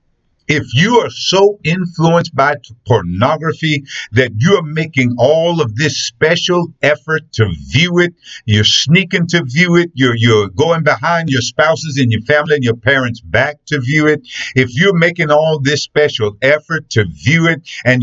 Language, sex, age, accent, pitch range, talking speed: English, male, 50-69, American, 120-160 Hz, 170 wpm